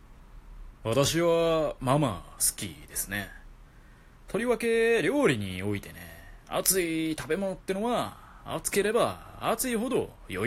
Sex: male